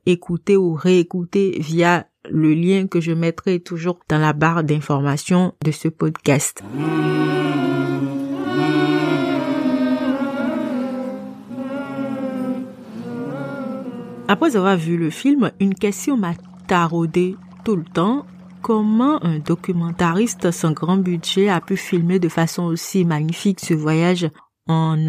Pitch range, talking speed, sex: 165-200 Hz, 110 wpm, female